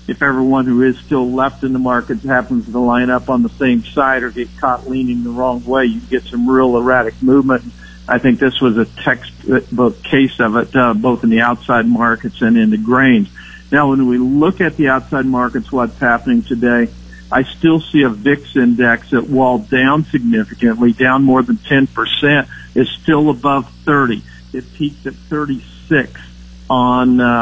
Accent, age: American, 50-69